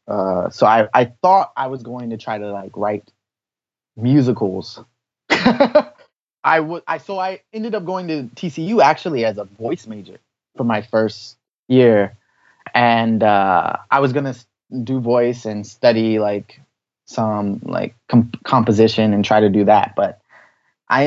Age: 20-39